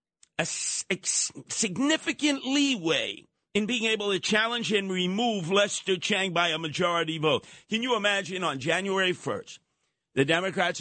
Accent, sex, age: American, male, 50-69